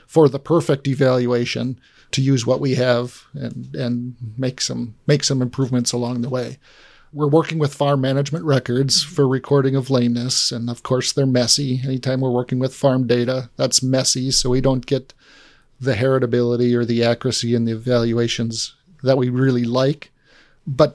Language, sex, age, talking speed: English, male, 40-59, 170 wpm